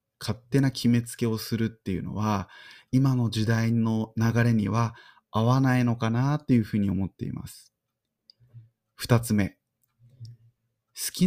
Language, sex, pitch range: Japanese, male, 110-135 Hz